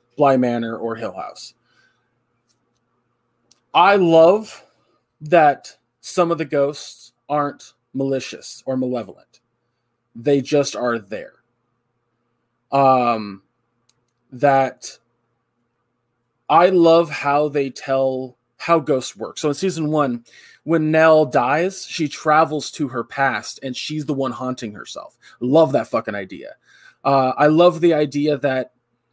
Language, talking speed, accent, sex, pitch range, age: English, 120 wpm, American, male, 120-155 Hz, 20-39